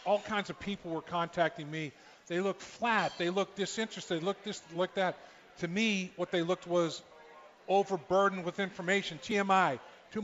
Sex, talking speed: male, 170 wpm